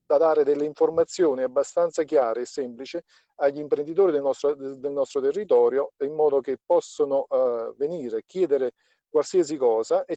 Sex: male